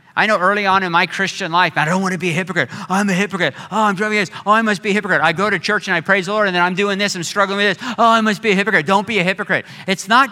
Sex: male